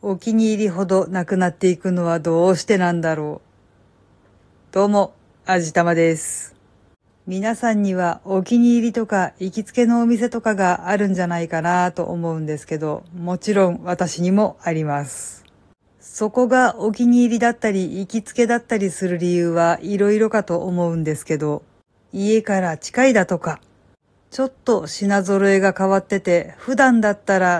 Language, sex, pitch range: Japanese, female, 175-220 Hz